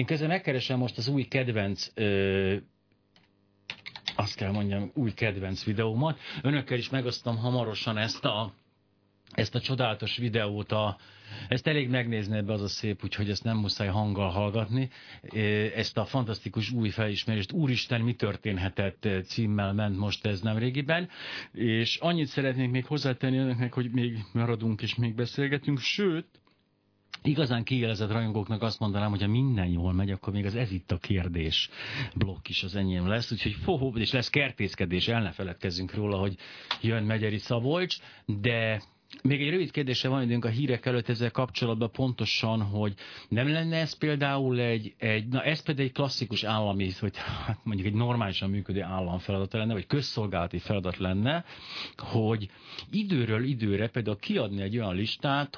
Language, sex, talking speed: Hungarian, male, 155 wpm